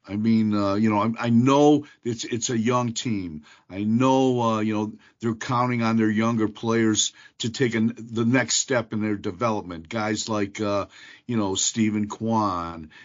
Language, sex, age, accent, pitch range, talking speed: English, male, 50-69, American, 105-125 Hz, 185 wpm